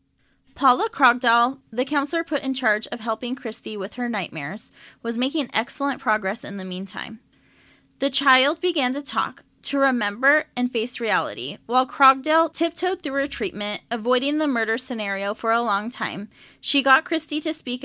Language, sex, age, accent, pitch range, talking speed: English, female, 20-39, American, 220-280 Hz, 165 wpm